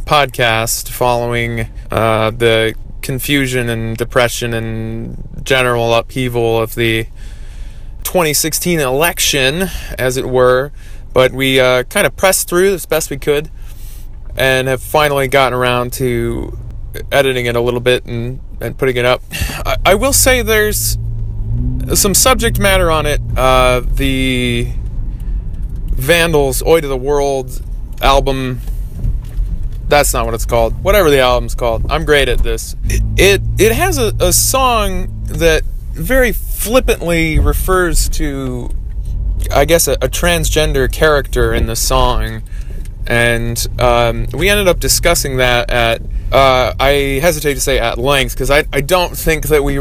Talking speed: 140 wpm